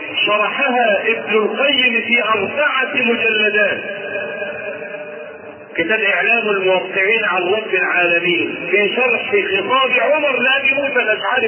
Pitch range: 210-260 Hz